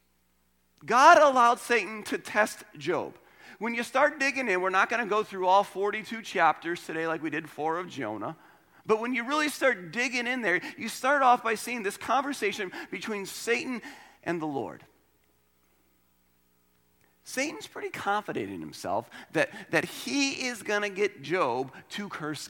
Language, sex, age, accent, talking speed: English, male, 40-59, American, 165 wpm